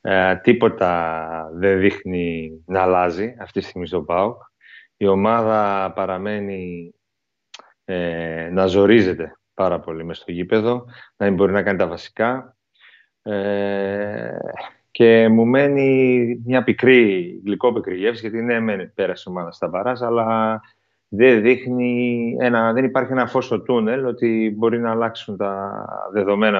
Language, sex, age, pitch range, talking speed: Greek, male, 30-49, 95-125 Hz, 125 wpm